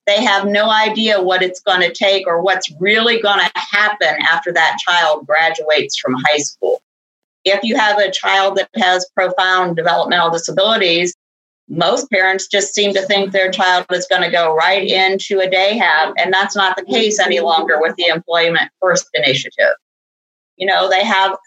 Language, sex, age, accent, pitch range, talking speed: English, female, 40-59, American, 175-200 Hz, 180 wpm